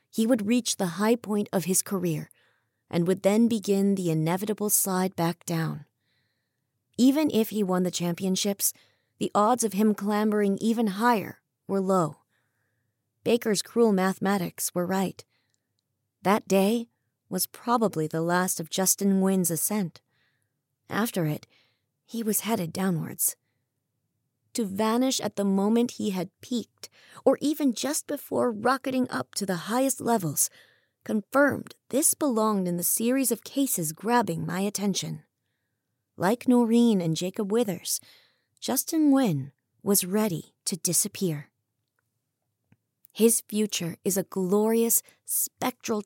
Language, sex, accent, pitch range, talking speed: English, female, American, 160-225 Hz, 130 wpm